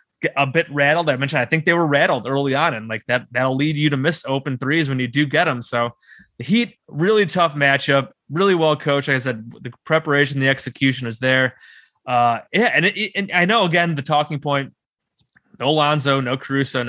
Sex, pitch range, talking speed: male, 130-170 Hz, 215 wpm